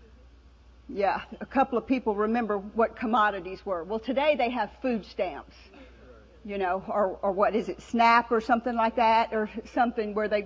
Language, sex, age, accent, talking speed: English, female, 50-69, American, 180 wpm